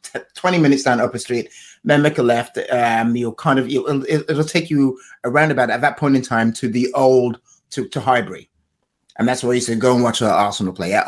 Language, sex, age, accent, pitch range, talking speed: English, male, 30-49, British, 110-135 Hz, 225 wpm